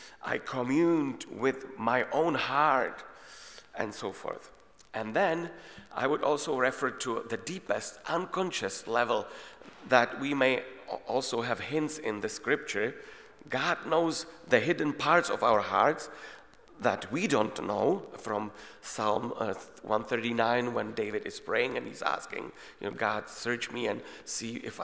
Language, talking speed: English, 145 wpm